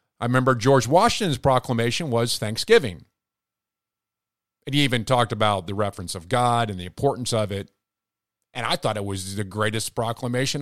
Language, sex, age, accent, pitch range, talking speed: English, male, 50-69, American, 105-135 Hz, 165 wpm